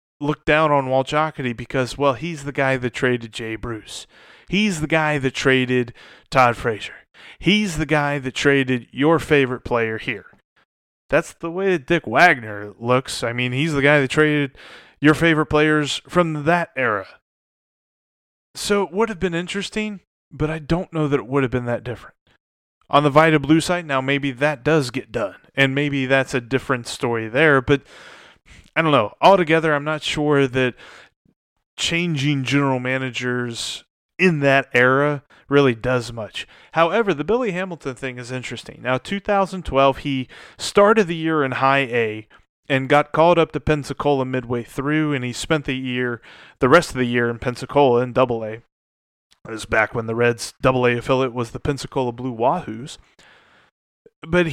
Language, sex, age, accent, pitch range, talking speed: English, male, 20-39, American, 125-155 Hz, 175 wpm